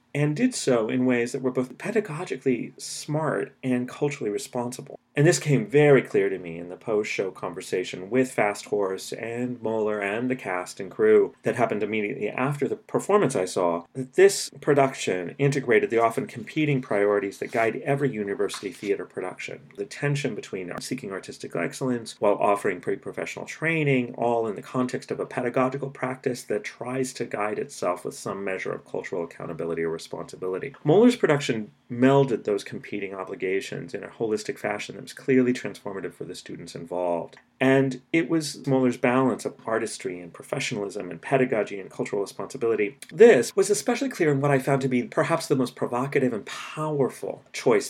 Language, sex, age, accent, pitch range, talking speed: English, male, 30-49, American, 105-140 Hz, 170 wpm